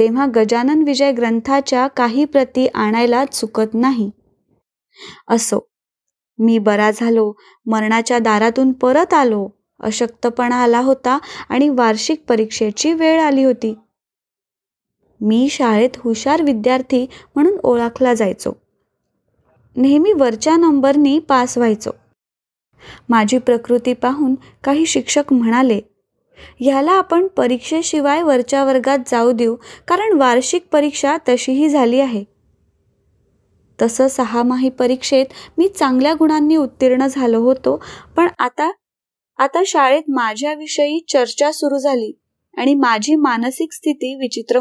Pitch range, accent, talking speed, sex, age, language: 235-295 Hz, native, 85 wpm, female, 20-39, Marathi